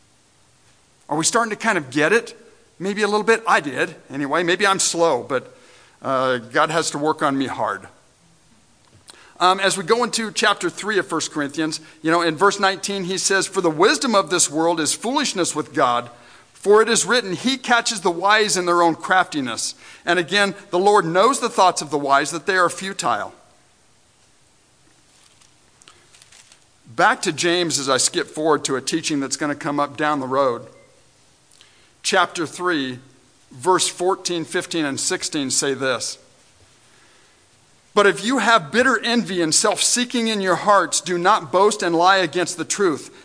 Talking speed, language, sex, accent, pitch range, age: 175 wpm, English, male, American, 160-210 Hz, 50-69